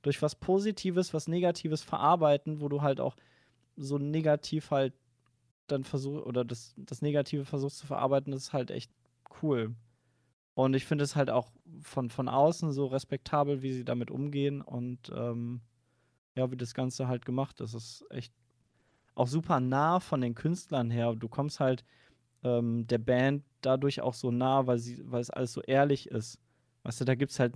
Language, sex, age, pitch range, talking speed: German, male, 20-39, 120-145 Hz, 180 wpm